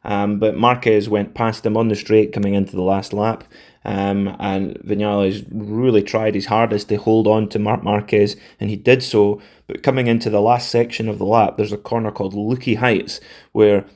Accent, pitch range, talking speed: British, 105-115 Hz, 200 wpm